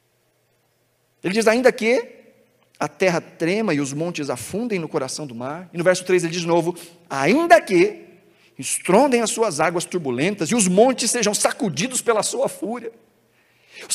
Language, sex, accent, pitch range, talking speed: Portuguese, male, Brazilian, 190-245 Hz, 170 wpm